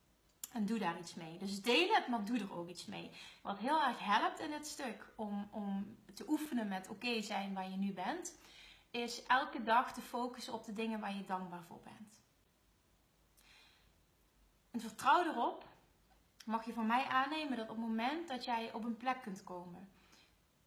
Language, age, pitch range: Dutch, 30-49, 205-245 Hz